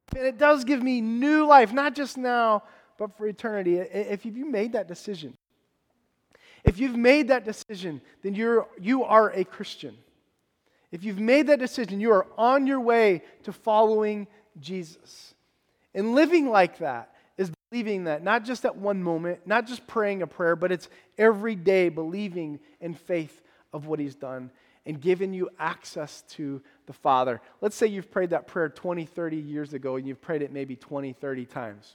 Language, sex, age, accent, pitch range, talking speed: English, male, 30-49, American, 155-215 Hz, 175 wpm